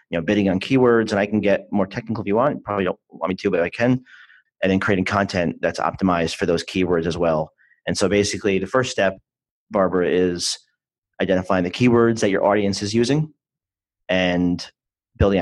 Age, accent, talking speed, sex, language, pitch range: 40-59, American, 200 wpm, male, English, 90-105 Hz